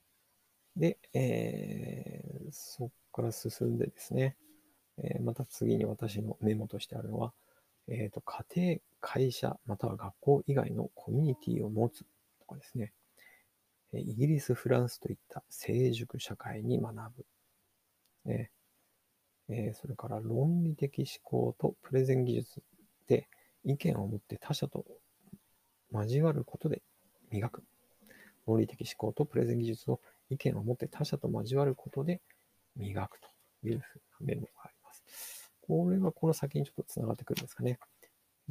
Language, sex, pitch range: Japanese, male, 110-150 Hz